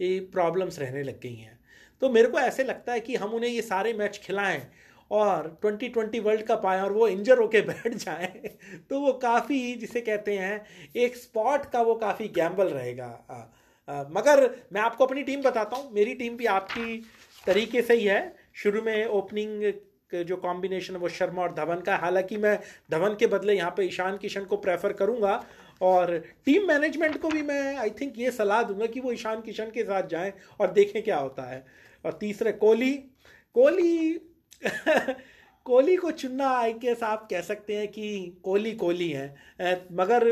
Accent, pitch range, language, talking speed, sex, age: native, 185-240 Hz, Hindi, 180 wpm, male, 30-49